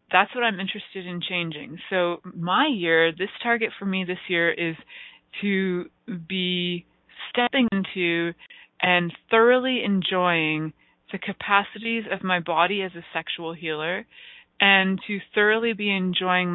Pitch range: 165-200 Hz